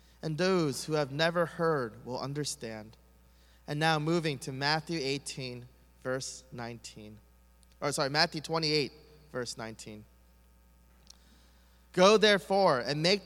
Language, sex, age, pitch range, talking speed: English, male, 20-39, 120-175 Hz, 120 wpm